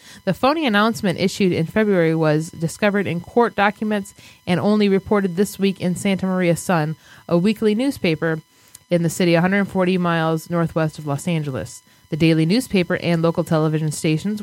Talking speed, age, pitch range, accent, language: 160 wpm, 20-39, 160-200 Hz, American, English